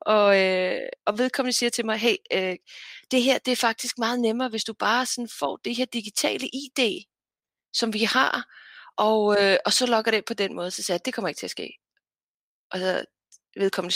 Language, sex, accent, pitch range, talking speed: Danish, female, native, 180-245 Hz, 215 wpm